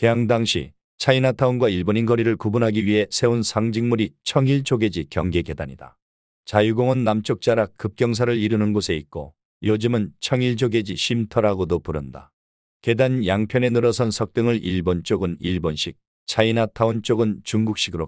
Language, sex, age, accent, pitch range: Korean, male, 40-59, native, 85-120 Hz